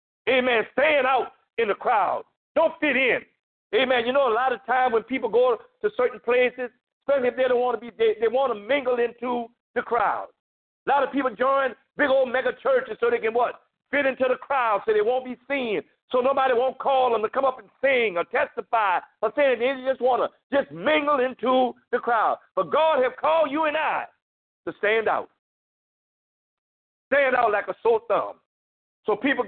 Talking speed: 205 wpm